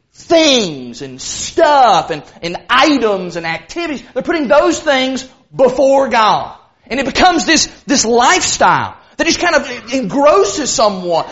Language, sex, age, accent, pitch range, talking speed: English, male, 30-49, American, 225-315 Hz, 140 wpm